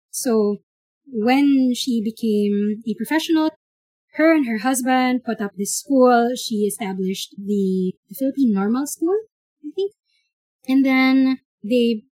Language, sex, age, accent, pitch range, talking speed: English, female, 20-39, Filipino, 205-265 Hz, 130 wpm